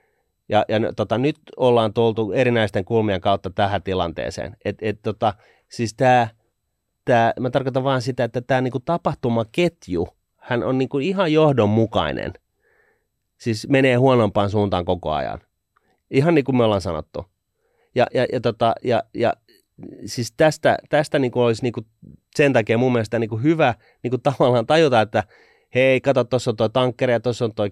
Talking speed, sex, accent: 160 wpm, male, native